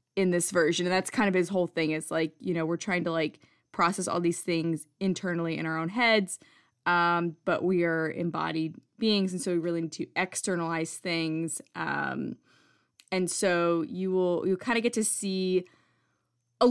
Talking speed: 190 wpm